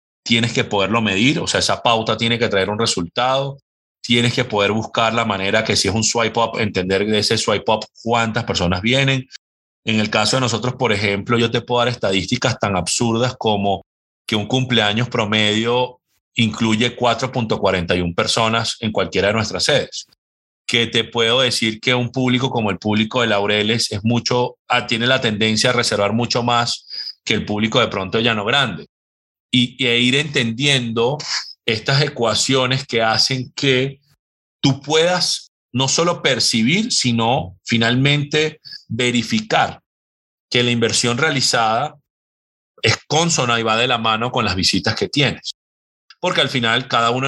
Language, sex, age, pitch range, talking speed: Spanish, male, 30-49, 110-130 Hz, 160 wpm